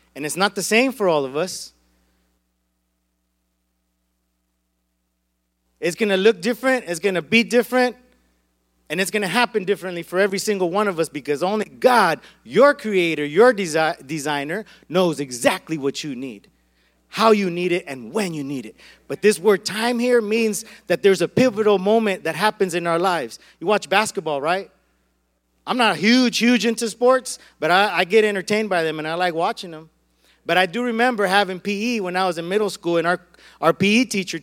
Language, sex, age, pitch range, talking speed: English, male, 30-49, 150-215 Hz, 190 wpm